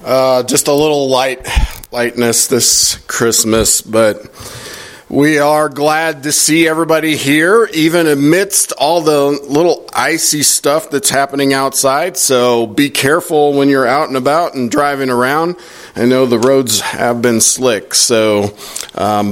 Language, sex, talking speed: English, male, 145 wpm